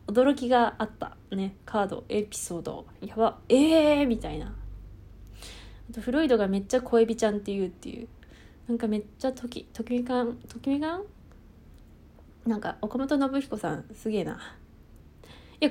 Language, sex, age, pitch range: Japanese, female, 20-39, 195-255 Hz